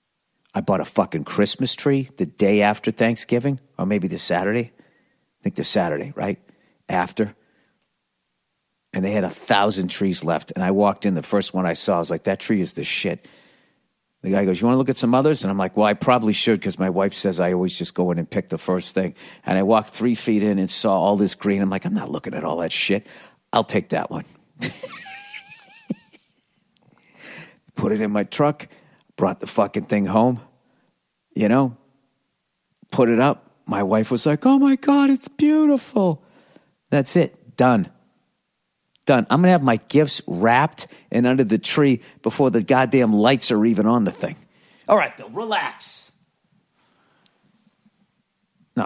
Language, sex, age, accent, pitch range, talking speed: English, male, 50-69, American, 95-140 Hz, 185 wpm